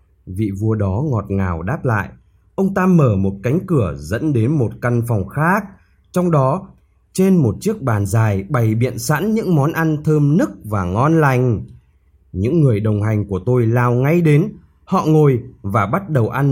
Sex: male